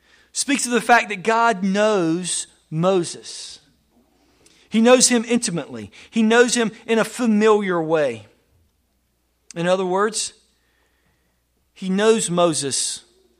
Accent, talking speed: American, 110 wpm